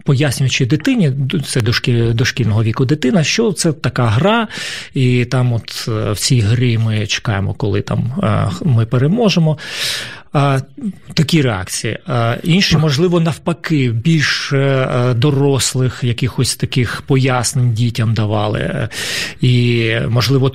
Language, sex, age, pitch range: Ukrainian, male, 40-59, 125-155 Hz